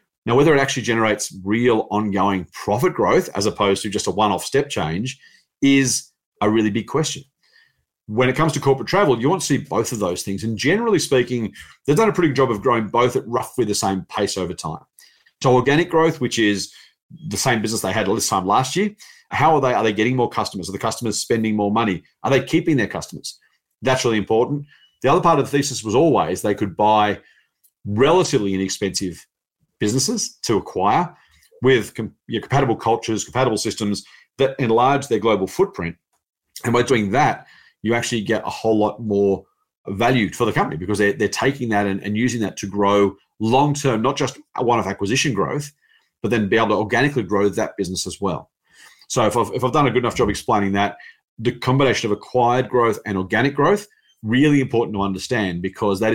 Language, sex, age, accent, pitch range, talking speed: English, male, 40-59, Australian, 100-135 Hz, 200 wpm